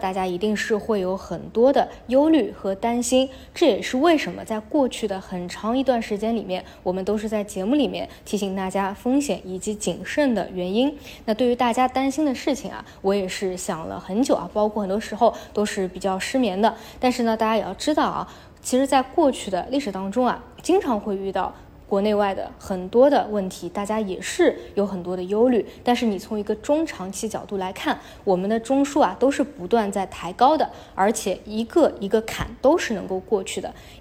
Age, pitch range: 20-39, 190-255 Hz